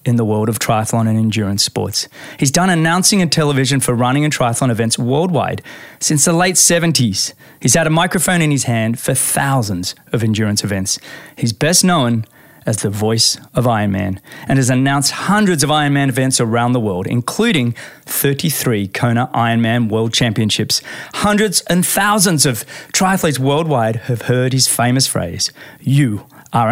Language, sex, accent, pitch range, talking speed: English, male, Australian, 115-145 Hz, 160 wpm